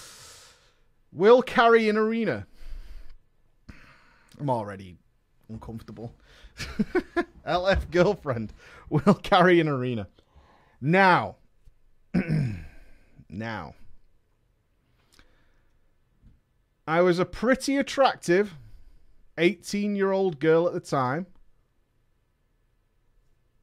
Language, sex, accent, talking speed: English, male, British, 65 wpm